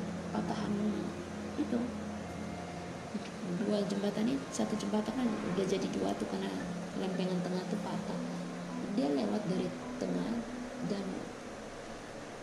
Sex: female